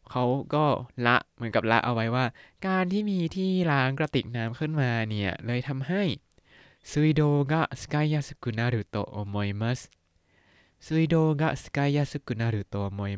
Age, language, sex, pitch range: 20-39, Thai, male, 105-145 Hz